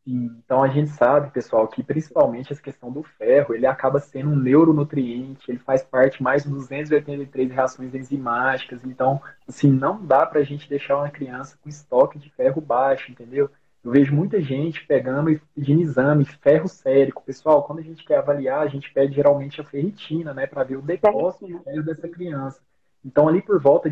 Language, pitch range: Portuguese, 140-170 Hz